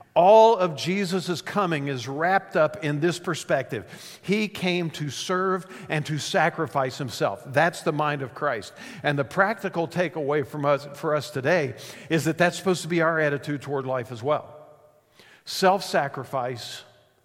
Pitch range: 140-175 Hz